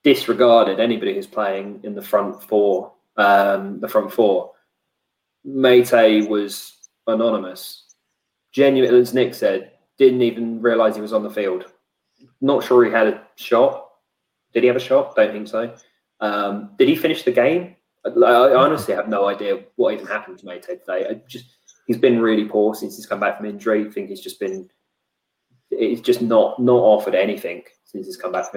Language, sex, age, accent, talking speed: English, male, 20-39, British, 180 wpm